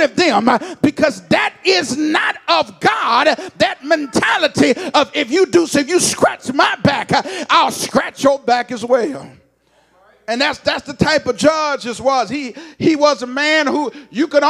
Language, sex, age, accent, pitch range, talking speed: English, male, 40-59, American, 225-310 Hz, 180 wpm